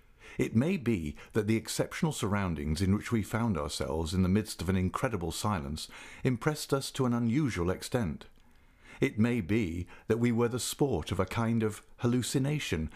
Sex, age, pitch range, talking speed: male, 50-69, 95-125 Hz, 175 wpm